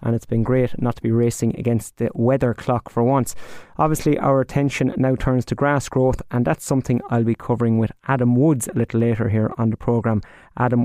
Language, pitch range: English, 115-135 Hz